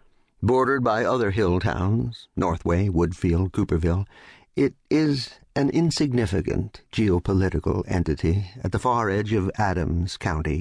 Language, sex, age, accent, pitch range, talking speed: English, male, 60-79, American, 90-120 Hz, 105 wpm